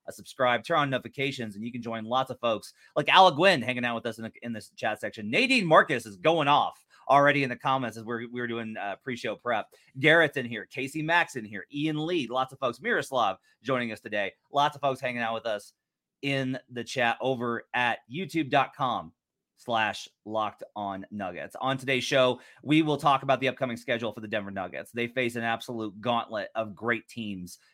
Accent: American